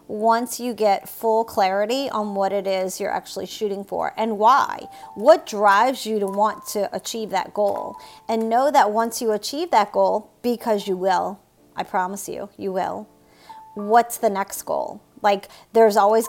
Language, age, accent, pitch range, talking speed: English, 40-59, American, 195-235 Hz, 175 wpm